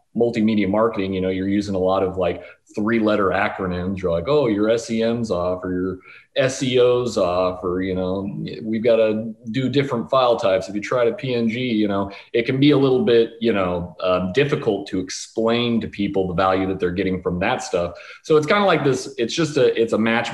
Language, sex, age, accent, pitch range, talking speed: English, male, 30-49, American, 95-115 Hz, 215 wpm